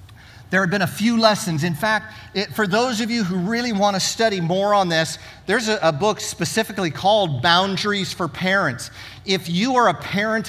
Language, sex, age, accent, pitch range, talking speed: English, male, 50-69, American, 155-210 Hz, 195 wpm